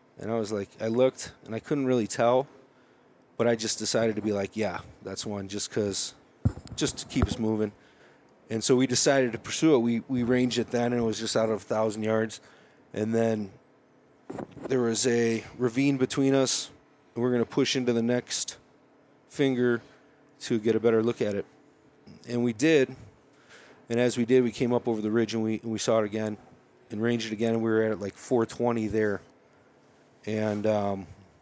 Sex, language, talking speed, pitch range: male, English, 200 wpm, 110-125 Hz